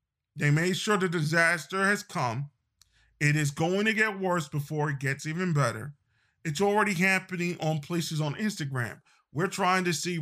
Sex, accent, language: male, American, English